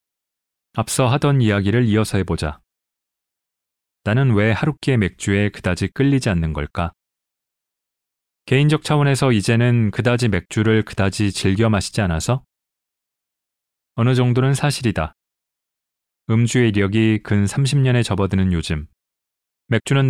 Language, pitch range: Korean, 90-125 Hz